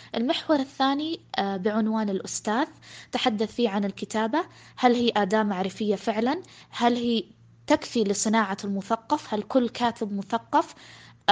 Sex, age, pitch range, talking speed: female, 20-39, 205-255 Hz, 115 wpm